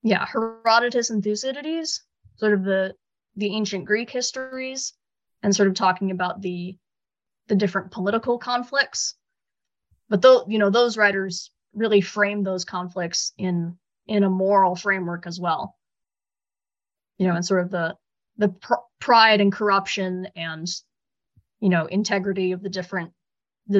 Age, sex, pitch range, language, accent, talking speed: 20-39, female, 180-210 Hz, English, American, 140 wpm